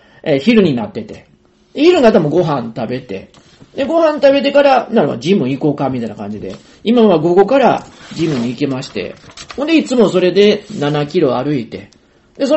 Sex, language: male, Japanese